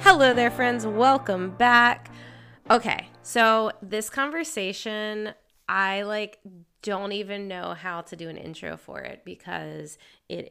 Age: 20-39